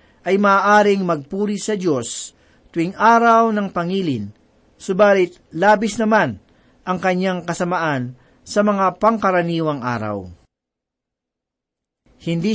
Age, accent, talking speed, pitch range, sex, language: 40-59, native, 95 wpm, 155-210 Hz, male, Filipino